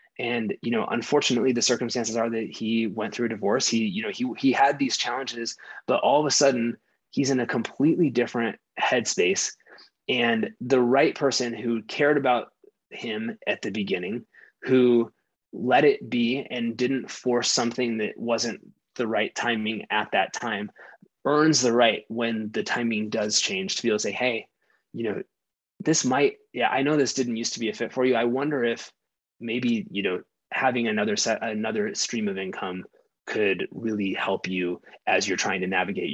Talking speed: 185 wpm